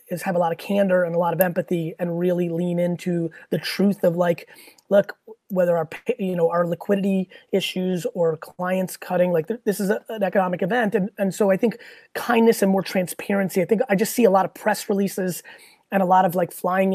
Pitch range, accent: 180-205 Hz, American